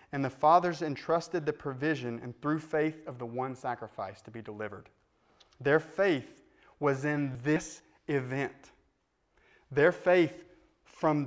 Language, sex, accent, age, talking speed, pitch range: English, male, American, 30-49, 135 wpm, 125-165 Hz